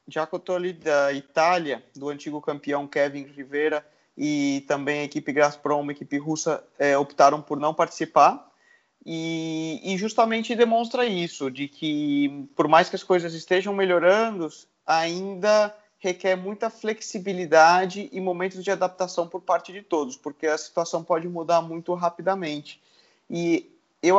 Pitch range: 155-190 Hz